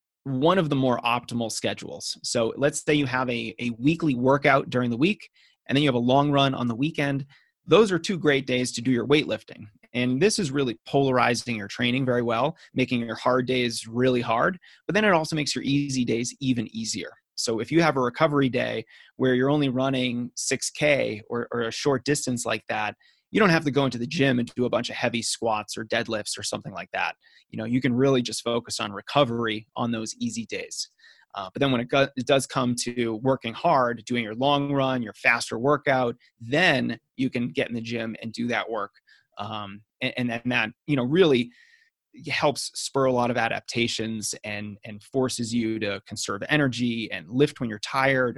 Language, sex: English, male